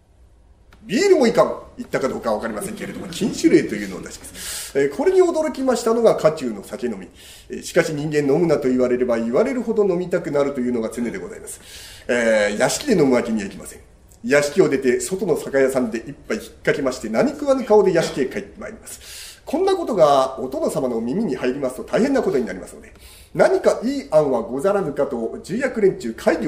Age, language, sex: 40-59, Japanese, male